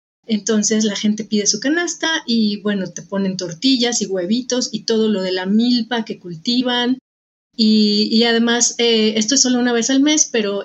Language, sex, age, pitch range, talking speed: Spanish, female, 30-49, 220-260 Hz, 185 wpm